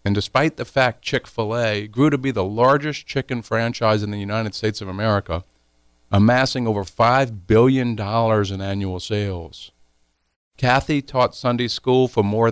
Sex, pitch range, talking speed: male, 75-120 Hz, 150 wpm